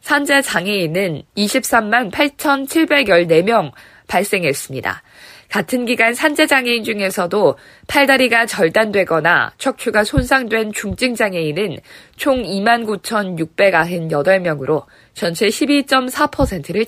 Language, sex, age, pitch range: Korean, female, 20-39, 180-255 Hz